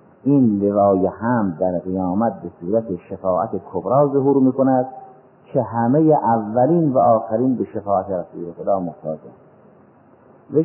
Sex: male